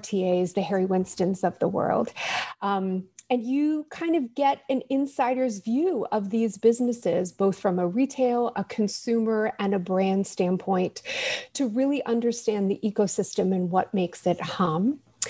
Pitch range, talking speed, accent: 190-235 Hz, 155 wpm, American